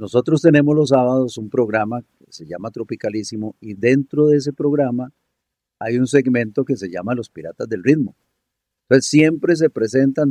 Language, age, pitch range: Spanish, 50-69, 110-145 Hz